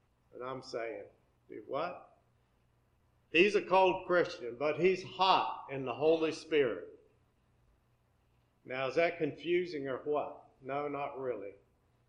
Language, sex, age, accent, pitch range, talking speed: English, male, 50-69, American, 120-170 Hz, 120 wpm